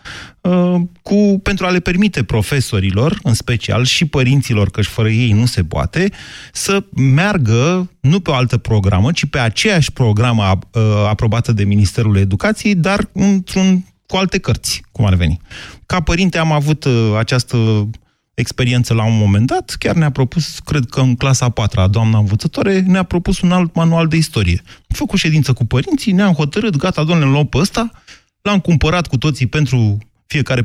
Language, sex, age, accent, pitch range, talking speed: Romanian, male, 30-49, native, 115-175 Hz, 170 wpm